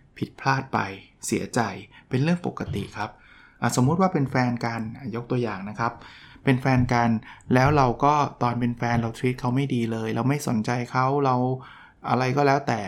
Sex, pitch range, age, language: male, 115-135 Hz, 20-39, Thai